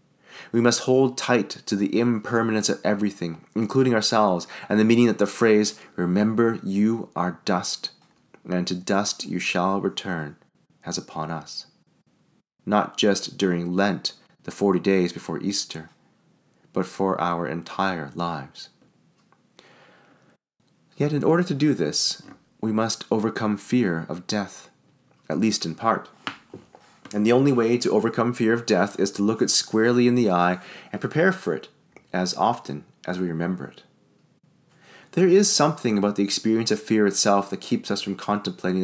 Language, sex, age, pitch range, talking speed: English, male, 30-49, 90-115 Hz, 155 wpm